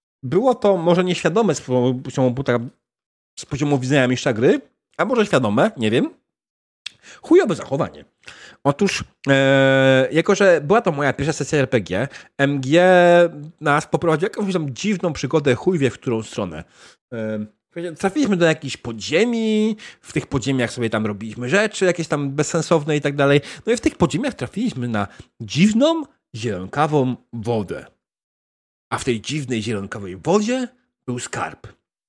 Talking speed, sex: 140 wpm, male